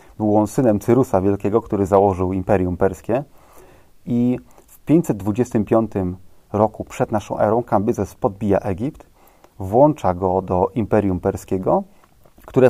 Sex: male